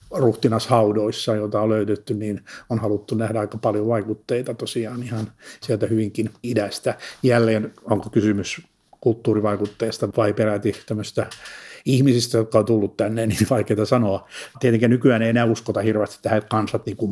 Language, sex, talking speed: Finnish, male, 140 wpm